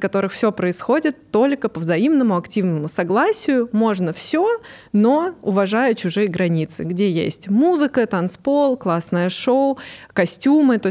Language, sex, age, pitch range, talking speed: Russian, female, 20-39, 180-230 Hz, 125 wpm